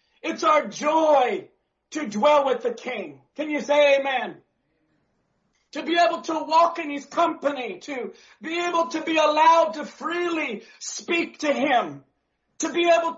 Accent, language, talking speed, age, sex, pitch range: American, English, 155 wpm, 40-59, male, 295-335 Hz